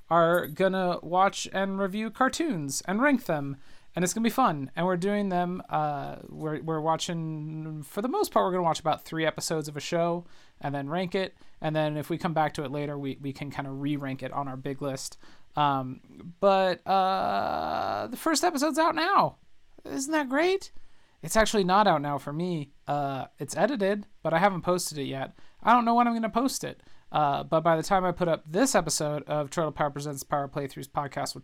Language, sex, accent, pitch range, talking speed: English, male, American, 150-200 Hz, 215 wpm